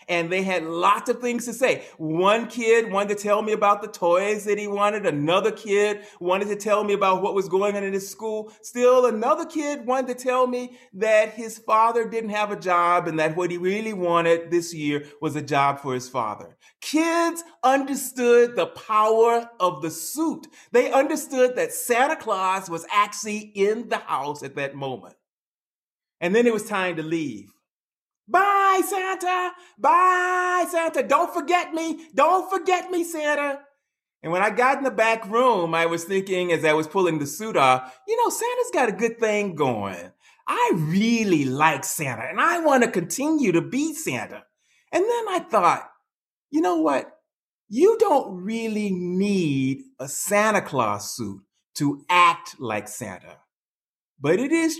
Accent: American